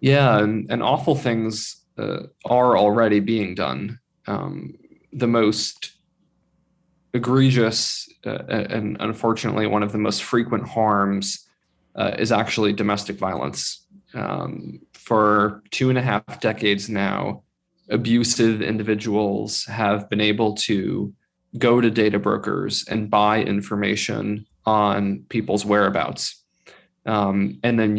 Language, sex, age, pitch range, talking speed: English, male, 20-39, 105-115 Hz, 120 wpm